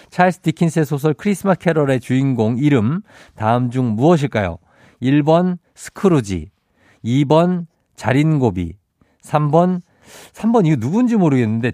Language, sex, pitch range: Korean, male, 105-150 Hz